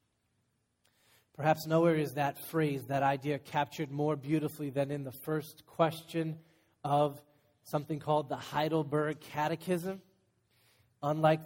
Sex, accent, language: male, American, English